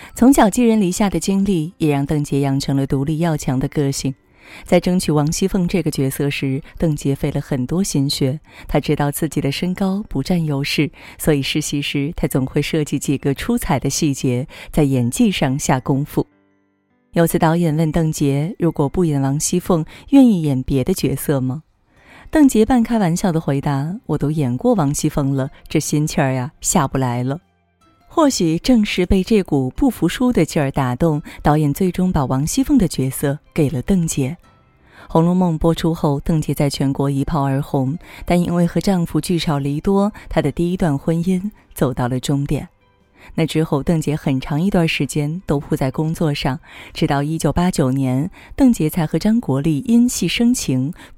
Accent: native